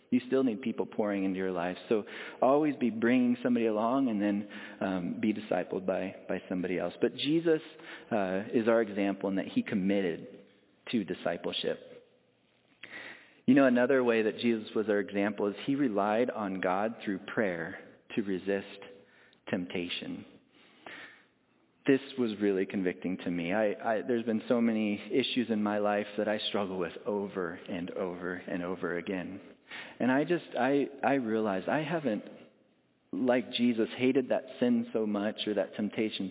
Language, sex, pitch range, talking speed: English, male, 95-125 Hz, 160 wpm